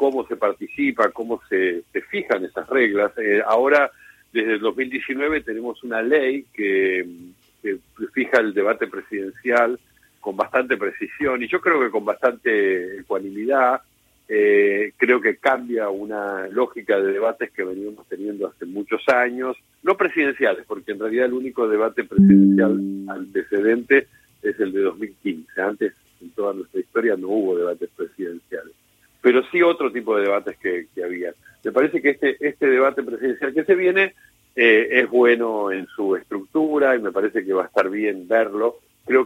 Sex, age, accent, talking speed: male, 50-69, Argentinian, 160 wpm